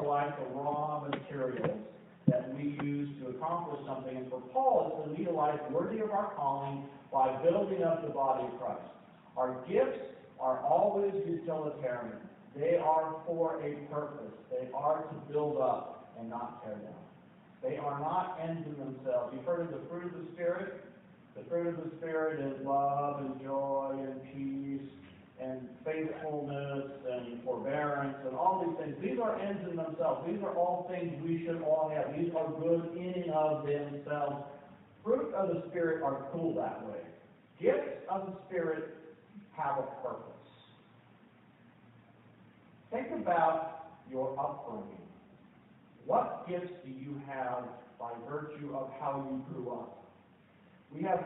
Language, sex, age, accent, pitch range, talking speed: English, male, 50-69, American, 140-175 Hz, 155 wpm